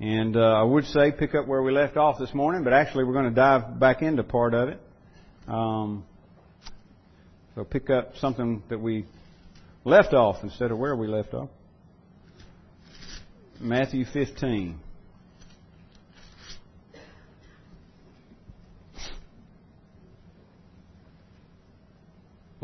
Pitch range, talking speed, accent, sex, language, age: 100-125 Hz, 110 wpm, American, male, English, 50-69